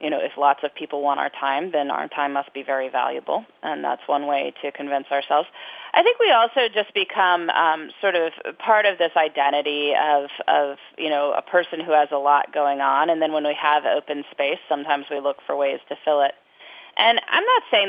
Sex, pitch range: female, 145-180 Hz